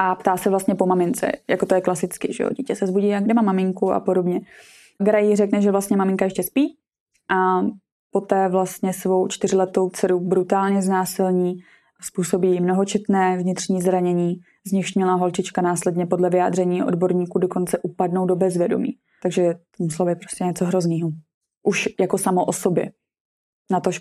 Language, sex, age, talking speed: Czech, female, 20-39, 155 wpm